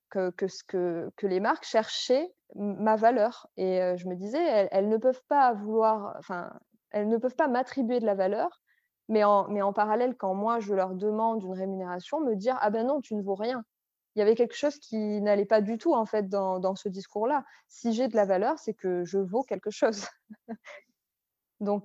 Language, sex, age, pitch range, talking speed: French, female, 20-39, 200-235 Hz, 215 wpm